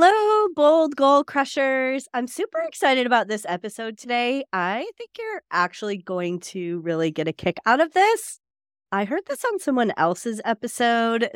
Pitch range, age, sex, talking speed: 185-275 Hz, 30-49, female, 165 wpm